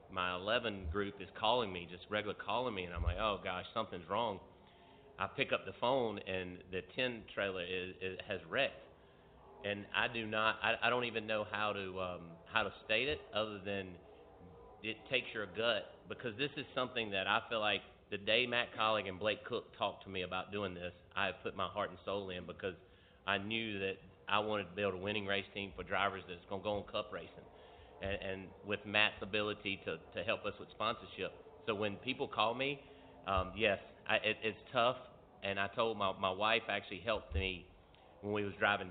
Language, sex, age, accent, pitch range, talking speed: English, male, 40-59, American, 95-105 Hz, 205 wpm